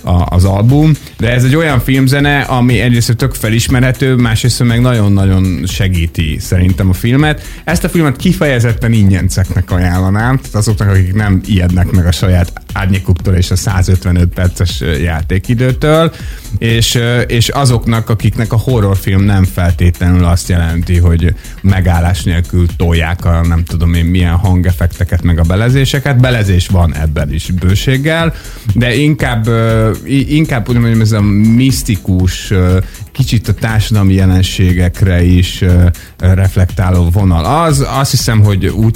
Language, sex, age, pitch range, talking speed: Hungarian, male, 30-49, 90-120 Hz, 135 wpm